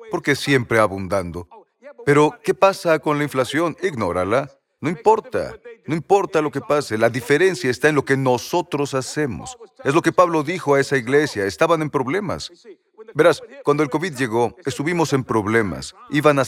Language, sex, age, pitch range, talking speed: Spanish, male, 40-59, 130-175 Hz, 170 wpm